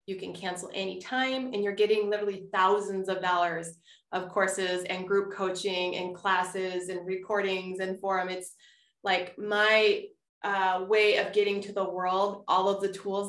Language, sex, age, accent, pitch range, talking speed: English, female, 20-39, American, 185-205 Hz, 165 wpm